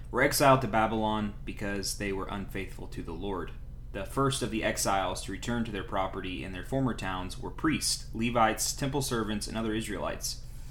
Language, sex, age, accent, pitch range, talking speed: English, male, 20-39, American, 100-120 Hz, 185 wpm